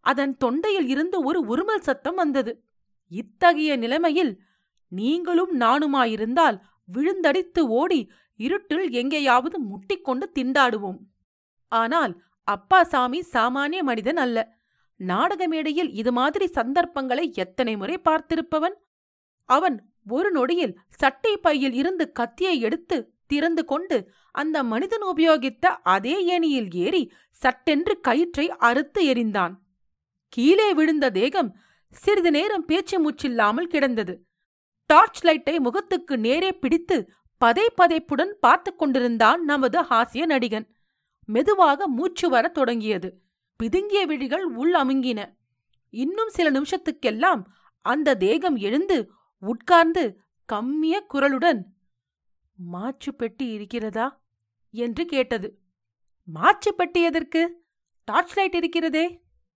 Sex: female